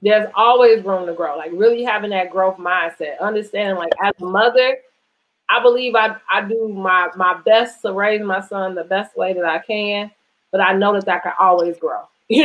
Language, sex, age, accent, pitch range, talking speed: English, female, 30-49, American, 190-240 Hz, 205 wpm